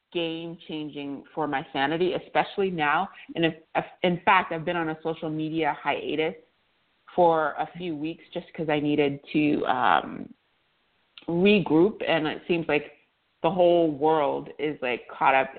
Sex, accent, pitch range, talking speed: female, American, 145-175 Hz, 145 wpm